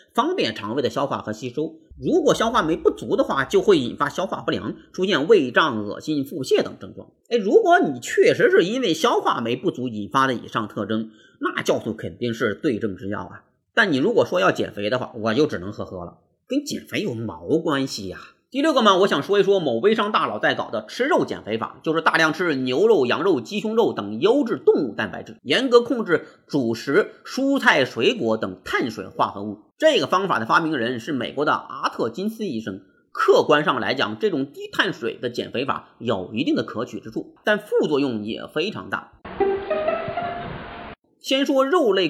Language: Chinese